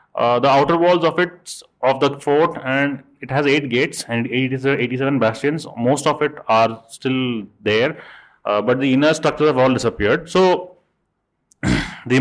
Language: English